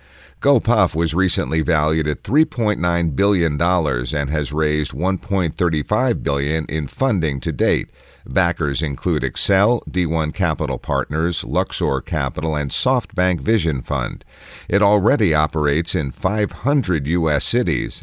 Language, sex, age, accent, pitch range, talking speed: English, male, 50-69, American, 75-95 Hz, 115 wpm